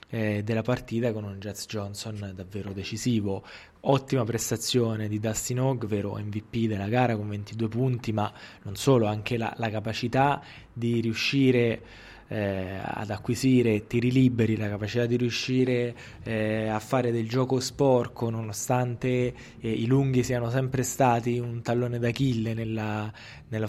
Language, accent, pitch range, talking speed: Italian, native, 110-125 Hz, 140 wpm